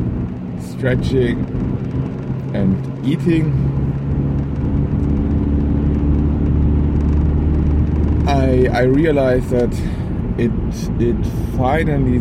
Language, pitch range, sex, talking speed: English, 75-115 Hz, male, 50 wpm